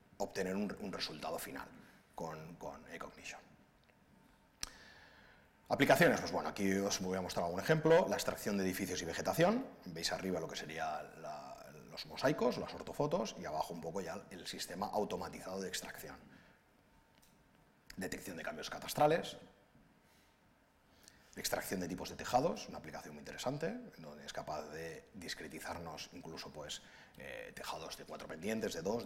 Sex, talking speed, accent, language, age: male, 145 wpm, Spanish, Spanish, 30-49